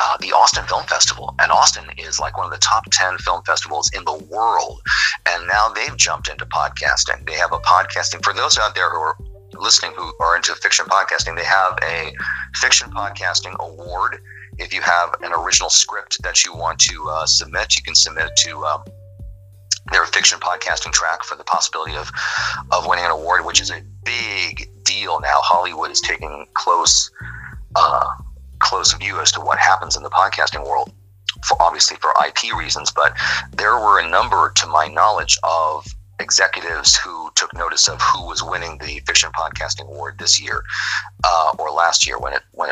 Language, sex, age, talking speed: English, male, 40-59, 185 wpm